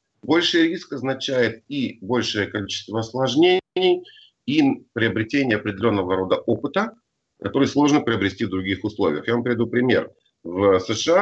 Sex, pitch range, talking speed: male, 105-145 Hz, 130 wpm